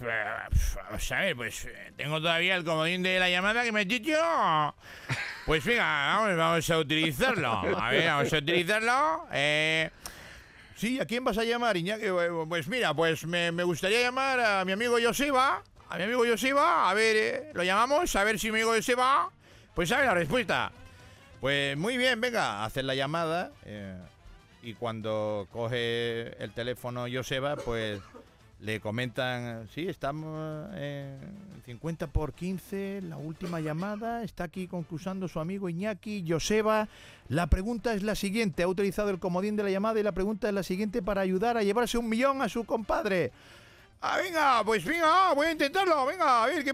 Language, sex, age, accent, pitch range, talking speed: Spanish, male, 40-59, Spanish, 130-225 Hz, 170 wpm